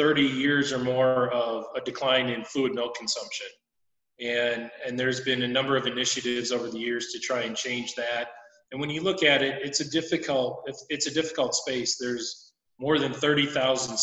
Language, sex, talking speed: English, male, 195 wpm